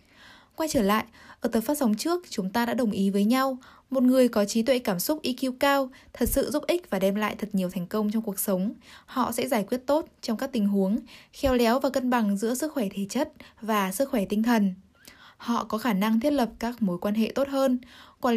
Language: Vietnamese